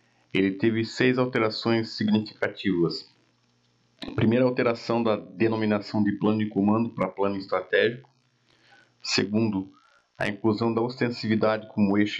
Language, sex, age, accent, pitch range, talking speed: Portuguese, male, 40-59, Brazilian, 95-115 Hz, 120 wpm